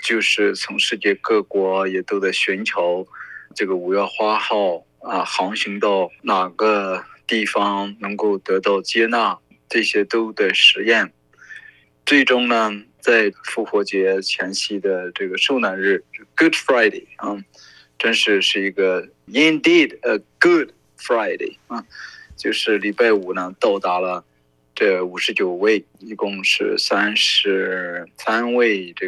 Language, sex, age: Chinese, male, 20-39